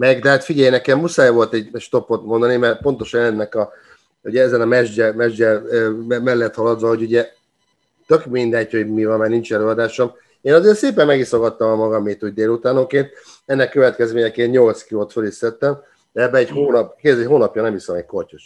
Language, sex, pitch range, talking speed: Hungarian, male, 105-120 Hz, 180 wpm